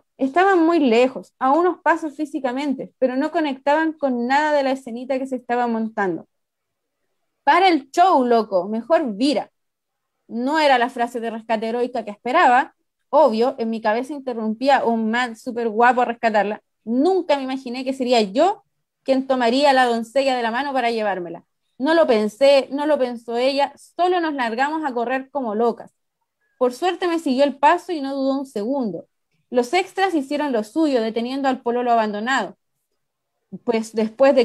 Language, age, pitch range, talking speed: Spanish, 20-39, 230-285 Hz, 170 wpm